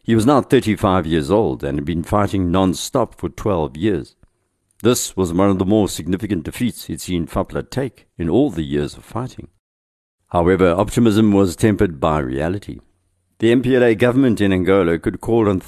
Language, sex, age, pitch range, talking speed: English, male, 60-79, 85-105 Hz, 175 wpm